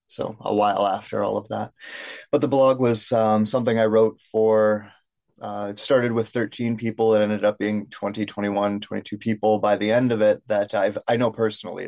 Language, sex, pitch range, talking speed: English, male, 105-115 Hz, 200 wpm